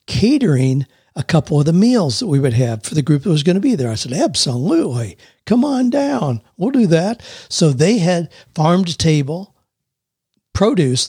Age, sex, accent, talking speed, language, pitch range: 60-79, male, American, 180 wpm, English, 130-165 Hz